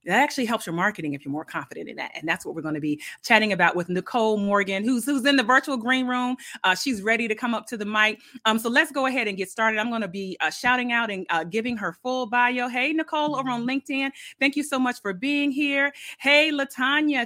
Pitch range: 200-260 Hz